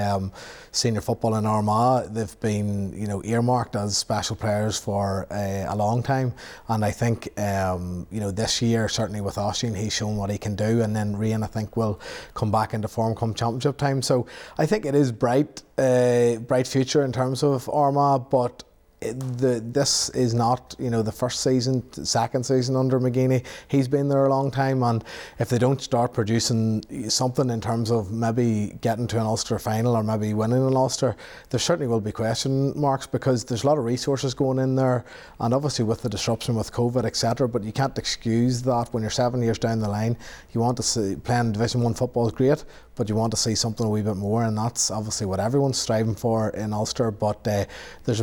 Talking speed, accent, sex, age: 210 wpm, Irish, male, 30-49